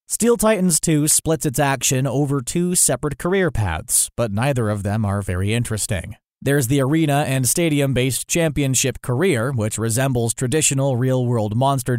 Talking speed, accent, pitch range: 150 wpm, American, 115-150 Hz